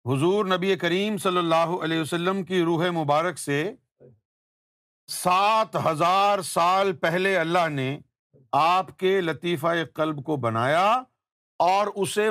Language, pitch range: Urdu, 150-225 Hz